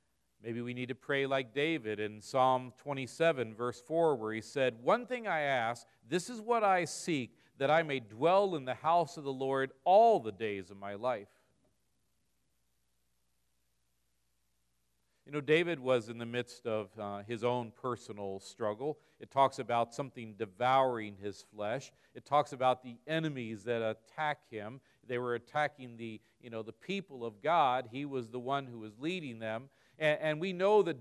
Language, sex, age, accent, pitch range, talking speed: English, male, 50-69, American, 105-145 Hz, 170 wpm